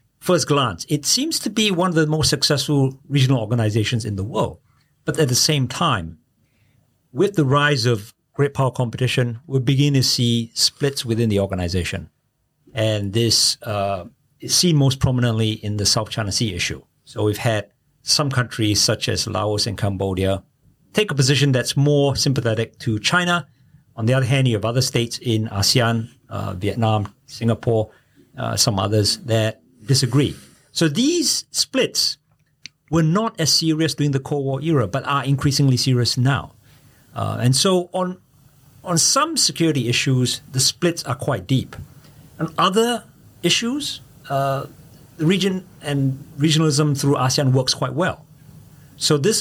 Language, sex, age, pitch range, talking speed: English, male, 50-69, 115-145 Hz, 160 wpm